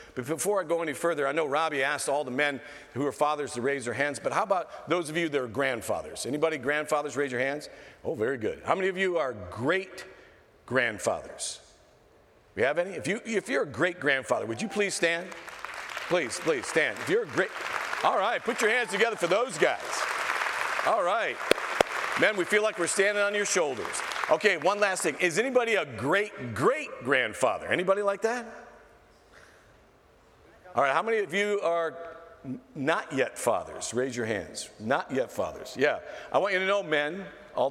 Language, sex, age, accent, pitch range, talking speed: English, male, 50-69, American, 145-200 Hz, 195 wpm